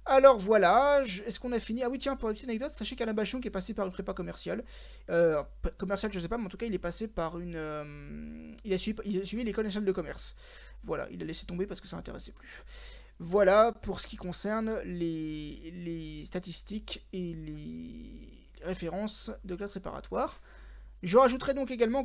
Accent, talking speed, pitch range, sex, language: French, 210 wpm, 175-235 Hz, male, French